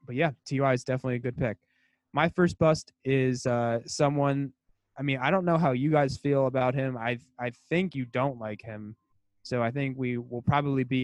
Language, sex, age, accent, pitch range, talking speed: English, male, 20-39, American, 120-135 Hz, 215 wpm